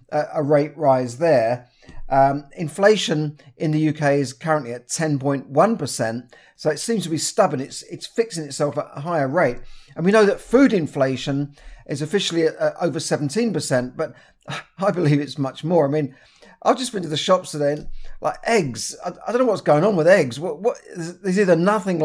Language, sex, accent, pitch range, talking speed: English, male, British, 145-190 Hz, 200 wpm